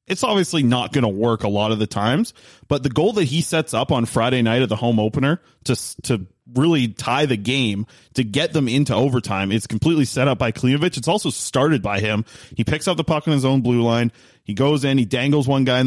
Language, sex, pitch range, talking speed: English, male, 115-140 Hz, 245 wpm